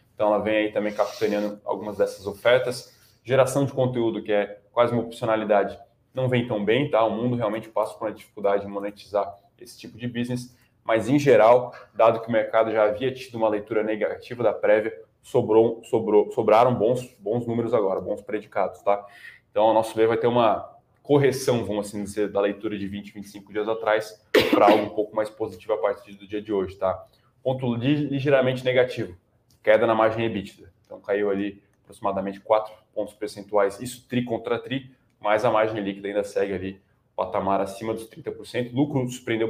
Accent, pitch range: Brazilian, 105-125 Hz